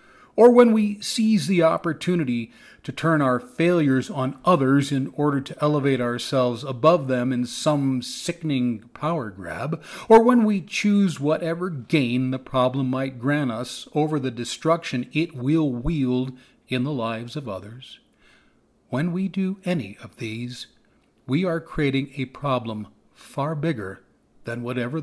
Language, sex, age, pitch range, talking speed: English, male, 40-59, 125-165 Hz, 145 wpm